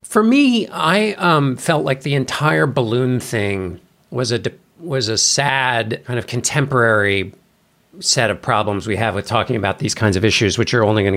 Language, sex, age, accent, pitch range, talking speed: English, male, 50-69, American, 105-160 Hz, 175 wpm